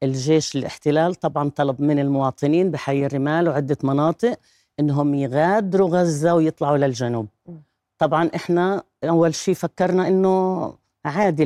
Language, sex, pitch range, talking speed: Arabic, female, 140-185 Hz, 115 wpm